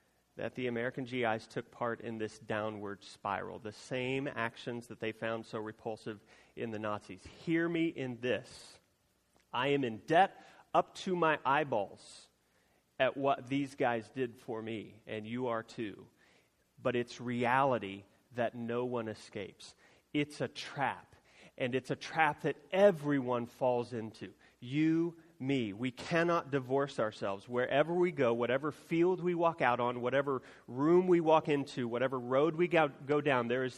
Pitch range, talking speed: 115-160 Hz, 160 wpm